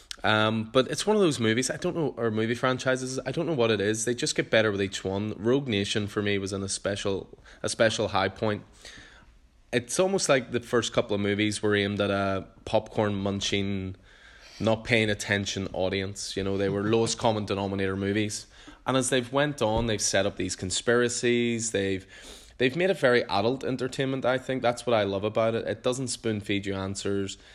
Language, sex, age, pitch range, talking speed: English, male, 20-39, 100-120 Hz, 230 wpm